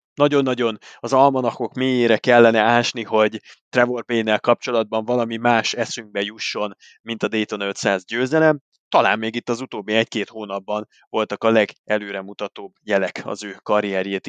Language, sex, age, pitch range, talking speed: Hungarian, male, 20-39, 105-130 Hz, 140 wpm